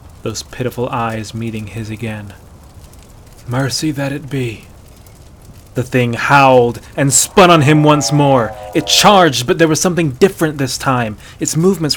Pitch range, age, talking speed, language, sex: 120-160 Hz, 20-39, 150 wpm, English, male